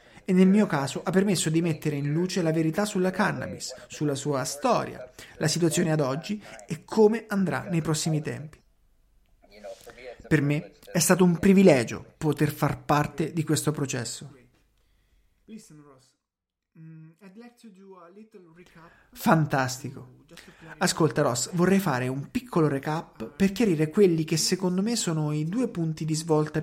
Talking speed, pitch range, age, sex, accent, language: 135 wpm, 145-190 Hz, 30-49, male, native, Italian